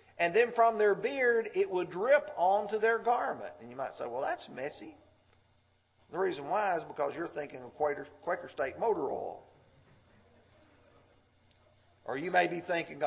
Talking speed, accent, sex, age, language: 160 wpm, American, male, 40-59, English